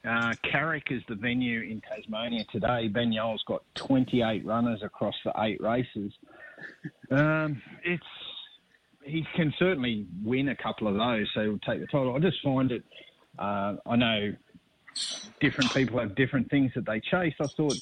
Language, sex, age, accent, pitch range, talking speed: English, male, 30-49, Australian, 110-130 Hz, 170 wpm